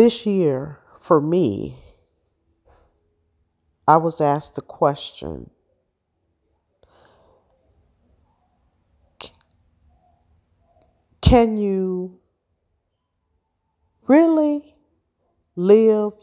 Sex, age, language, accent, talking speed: female, 40-59, English, American, 50 wpm